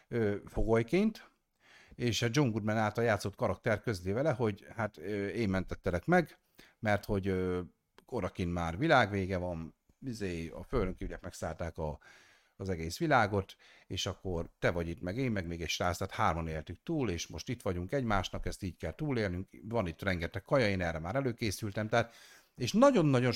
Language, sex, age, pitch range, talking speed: Hungarian, male, 50-69, 95-135 Hz, 165 wpm